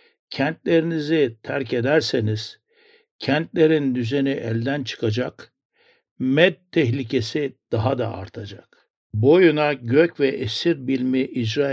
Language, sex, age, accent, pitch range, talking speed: Turkish, male, 60-79, native, 115-145 Hz, 90 wpm